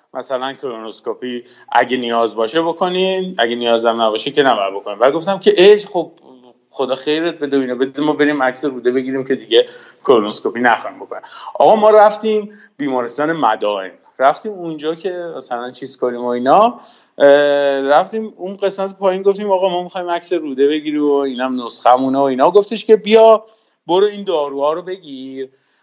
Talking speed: 165 wpm